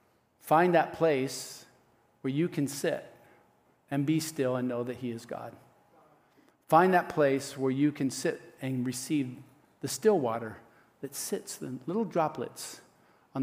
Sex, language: male, English